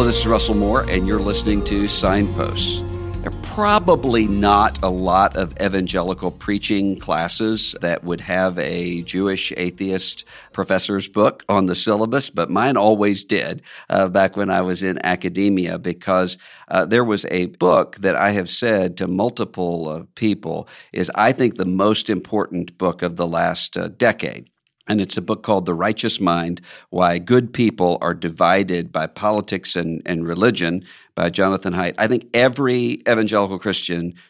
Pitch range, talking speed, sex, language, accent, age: 90-105 Hz, 165 wpm, male, English, American, 50-69